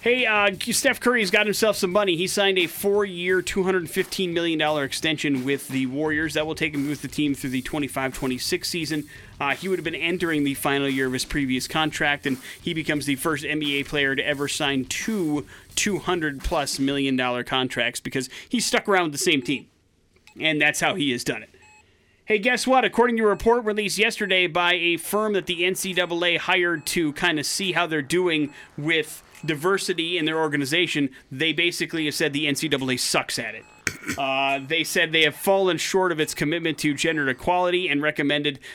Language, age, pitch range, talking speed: English, 30-49, 140-180 Hz, 190 wpm